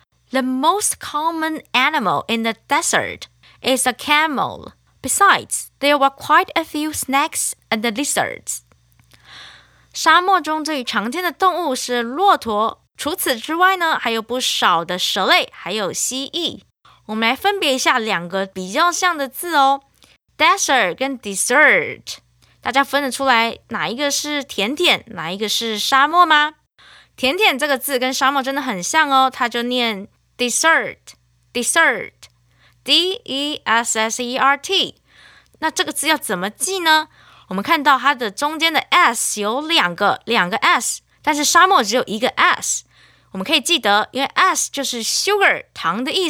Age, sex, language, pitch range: 20-39, female, Chinese, 235-325 Hz